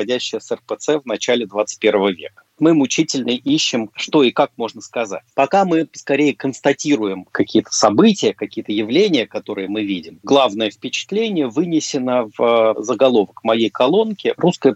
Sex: male